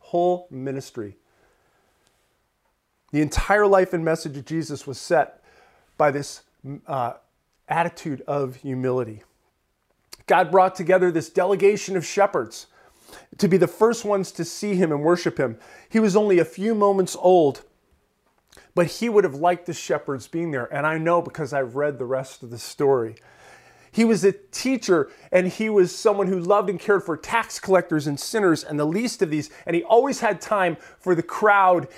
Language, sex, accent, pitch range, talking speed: English, male, American, 160-210 Hz, 175 wpm